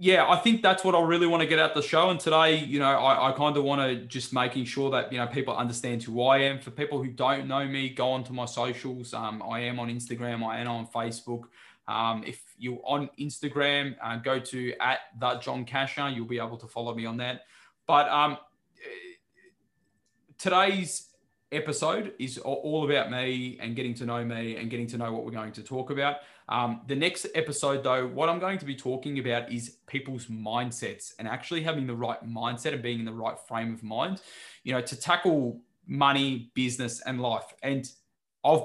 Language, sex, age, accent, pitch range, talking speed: English, male, 20-39, Australian, 115-145 Hz, 210 wpm